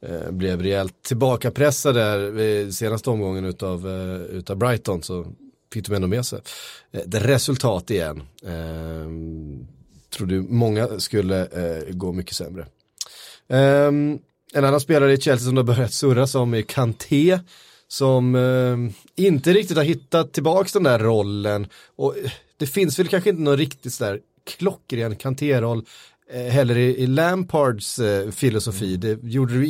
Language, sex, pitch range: Swedish, male, 100-140 Hz